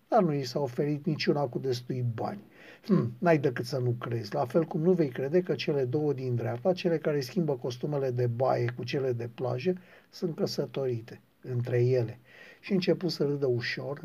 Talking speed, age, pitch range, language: 190 wpm, 50-69, 130-185 Hz, Romanian